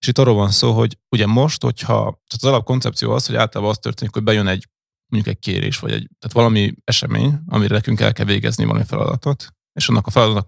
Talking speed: 225 wpm